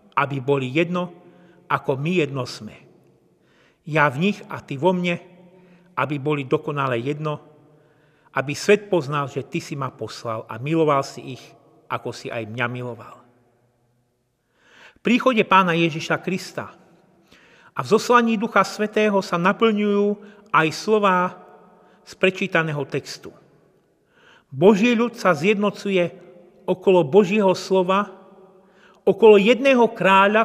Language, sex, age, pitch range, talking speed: Slovak, male, 40-59, 155-205 Hz, 120 wpm